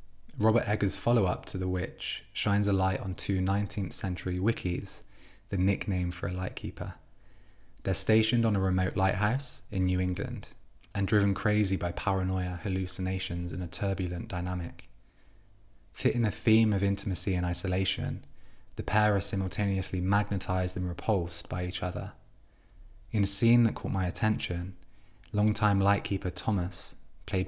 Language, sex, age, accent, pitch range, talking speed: English, male, 20-39, British, 90-105 Hz, 150 wpm